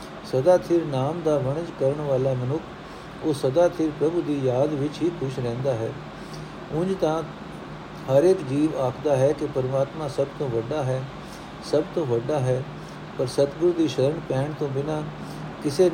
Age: 60-79